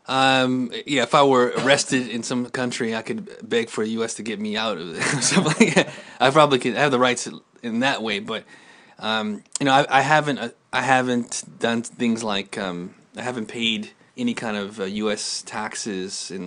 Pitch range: 110-145 Hz